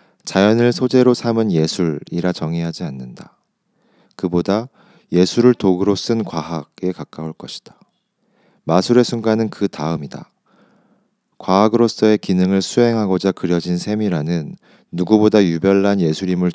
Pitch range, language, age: 85-120 Hz, Korean, 40-59